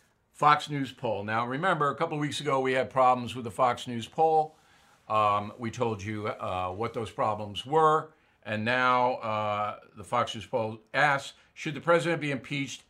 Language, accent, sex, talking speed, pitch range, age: English, American, male, 185 wpm, 120-165 Hz, 50-69